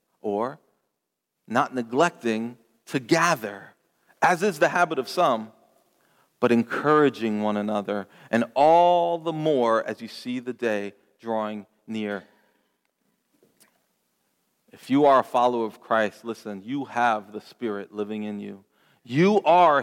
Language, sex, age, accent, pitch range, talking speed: English, male, 40-59, American, 115-160 Hz, 130 wpm